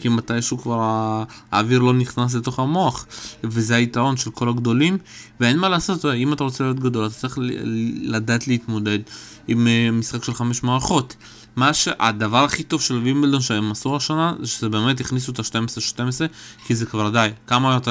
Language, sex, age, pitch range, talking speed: Hebrew, male, 20-39, 115-130 Hz, 170 wpm